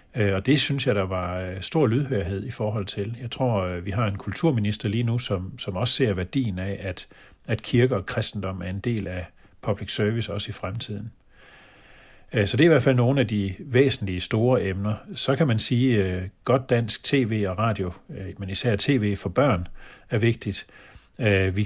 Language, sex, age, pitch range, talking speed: Danish, male, 40-59, 100-125 Hz, 190 wpm